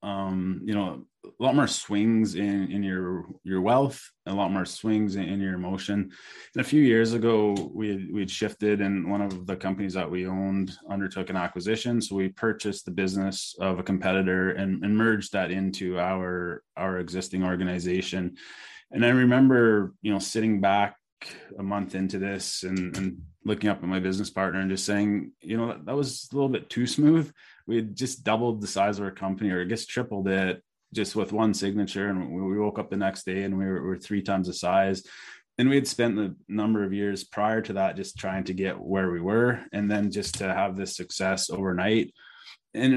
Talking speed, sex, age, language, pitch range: 210 wpm, male, 20-39, English, 95-110 Hz